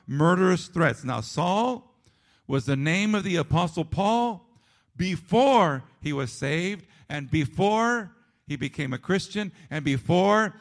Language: English